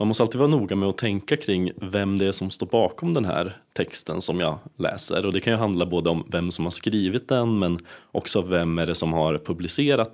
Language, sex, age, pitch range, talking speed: Swedish, male, 30-49, 80-100 Hz, 245 wpm